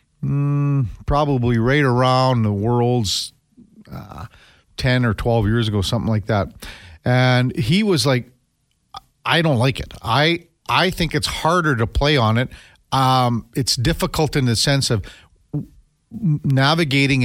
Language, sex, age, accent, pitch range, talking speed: English, male, 50-69, American, 115-150 Hz, 140 wpm